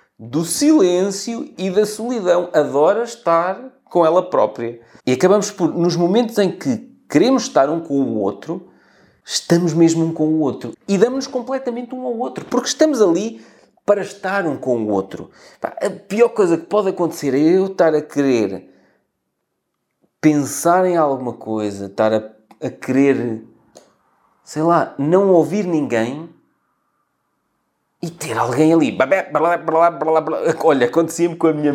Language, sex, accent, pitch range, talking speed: Portuguese, male, Portuguese, 135-210 Hz, 155 wpm